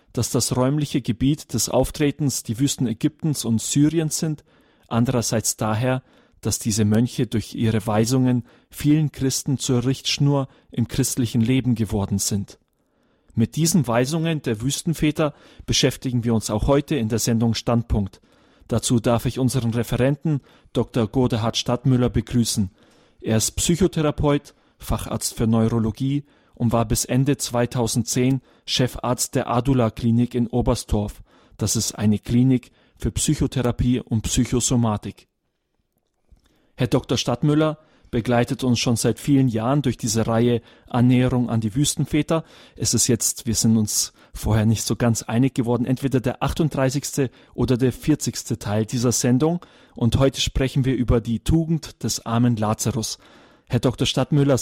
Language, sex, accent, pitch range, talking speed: German, male, German, 115-135 Hz, 140 wpm